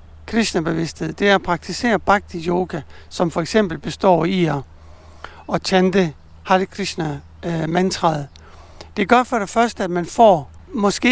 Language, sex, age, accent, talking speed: Danish, male, 60-79, native, 140 wpm